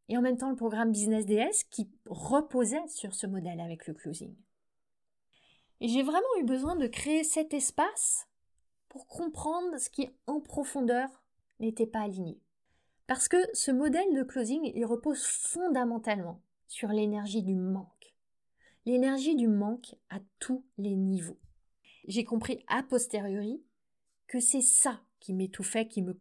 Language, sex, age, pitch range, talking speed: French, female, 30-49, 205-270 Hz, 150 wpm